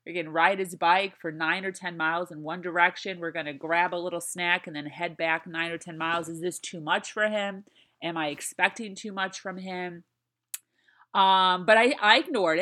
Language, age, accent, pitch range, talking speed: English, 30-49, American, 160-200 Hz, 215 wpm